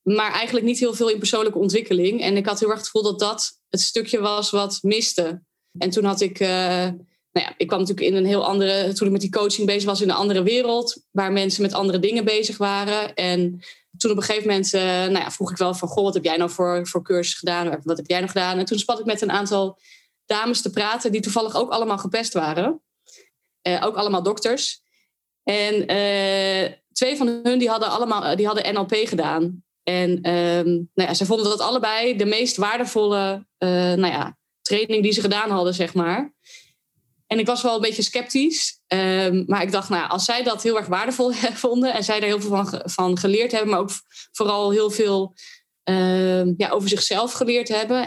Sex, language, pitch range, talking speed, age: female, Dutch, 185-225 Hz, 210 wpm, 20-39